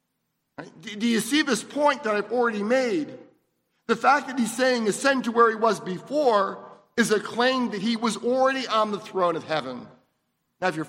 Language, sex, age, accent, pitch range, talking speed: English, male, 50-69, American, 175-240 Hz, 195 wpm